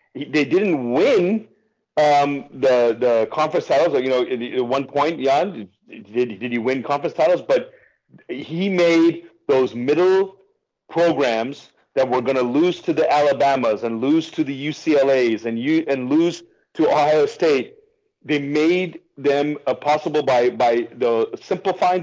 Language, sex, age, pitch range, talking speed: English, male, 40-59, 130-170 Hz, 150 wpm